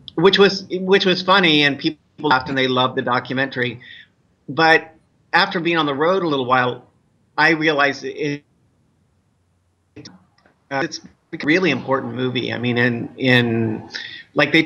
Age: 30-49